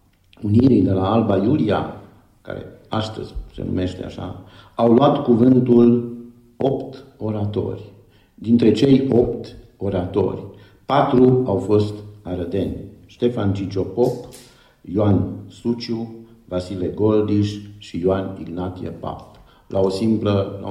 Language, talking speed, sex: Romanian, 100 wpm, male